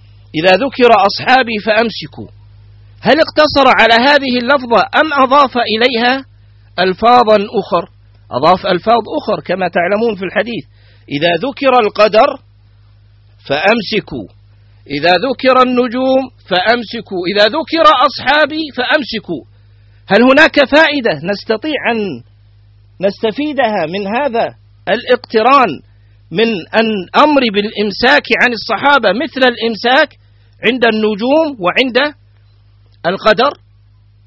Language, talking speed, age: Arabic, 95 wpm, 50-69